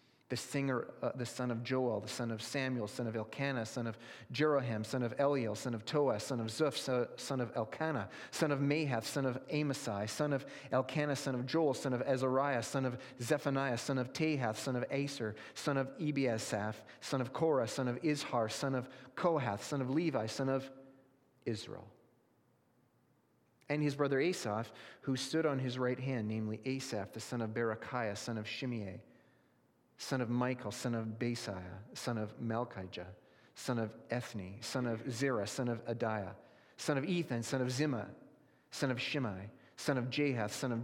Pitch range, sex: 115-135 Hz, male